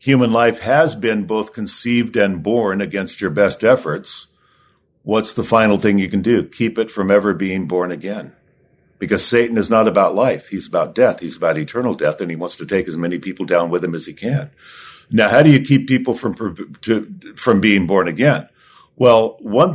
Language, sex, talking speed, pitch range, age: English, male, 205 wpm, 100-125 Hz, 50-69